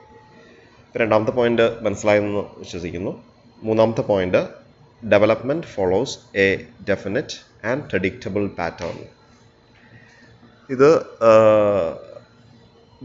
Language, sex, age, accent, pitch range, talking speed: English, male, 30-49, Indian, 95-115 Hz, 85 wpm